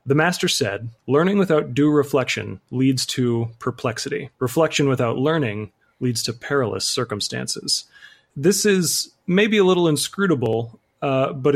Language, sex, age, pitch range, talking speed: English, male, 30-49, 120-145 Hz, 130 wpm